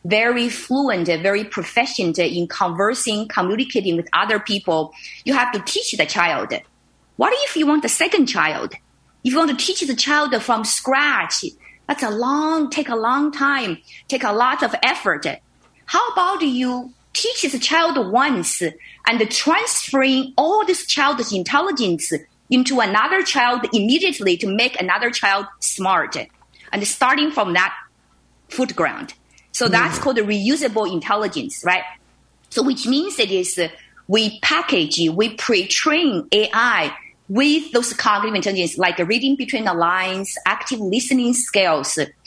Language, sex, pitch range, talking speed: English, female, 190-275 Hz, 145 wpm